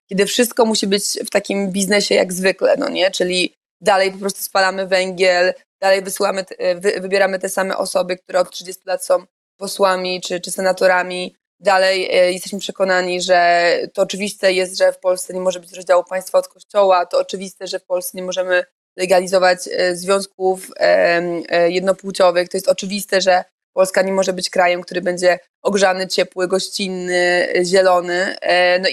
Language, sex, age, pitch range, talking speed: Polish, female, 20-39, 185-205 Hz, 155 wpm